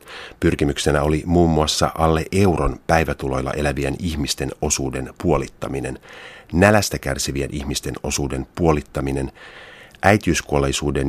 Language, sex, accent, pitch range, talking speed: Finnish, male, native, 70-80 Hz, 90 wpm